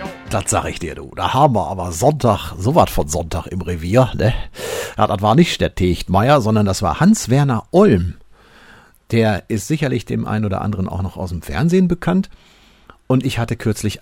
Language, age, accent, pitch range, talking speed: German, 50-69, German, 90-120 Hz, 195 wpm